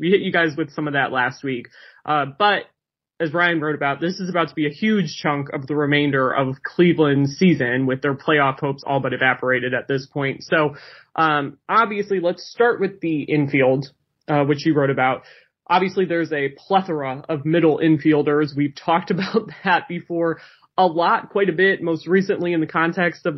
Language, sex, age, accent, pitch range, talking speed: English, male, 20-39, American, 150-180 Hz, 195 wpm